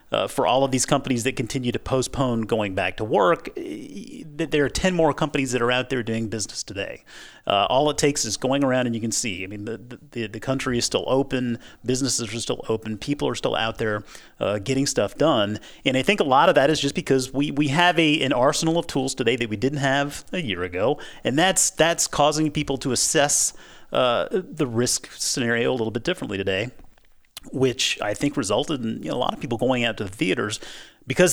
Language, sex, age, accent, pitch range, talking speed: English, male, 40-59, American, 110-145 Hz, 225 wpm